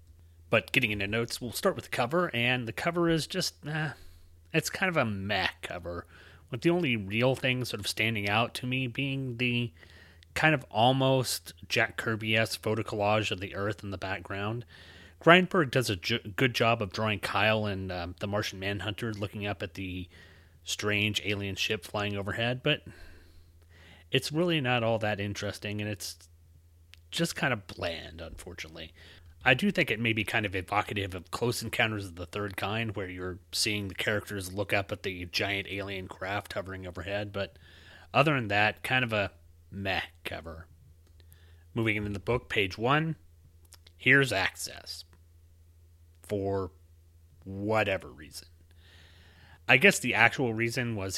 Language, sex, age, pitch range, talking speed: English, male, 30-49, 85-115 Hz, 165 wpm